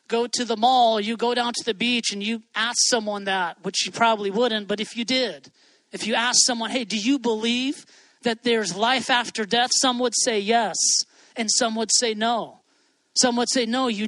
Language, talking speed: English, 215 wpm